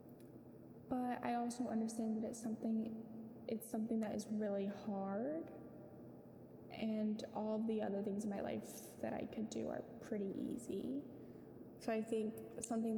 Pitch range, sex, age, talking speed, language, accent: 205-245 Hz, female, 10-29, 150 wpm, English, American